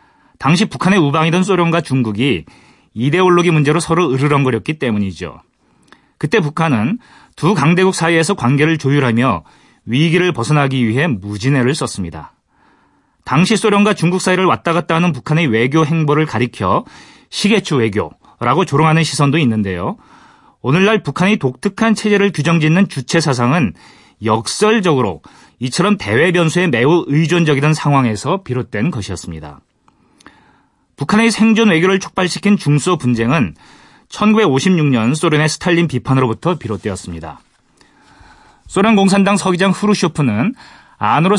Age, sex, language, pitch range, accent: 40-59, male, Korean, 125-185 Hz, native